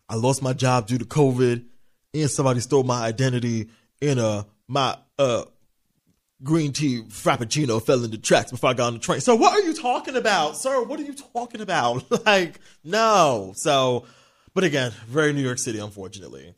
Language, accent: English, American